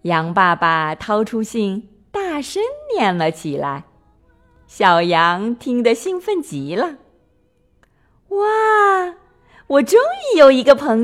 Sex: female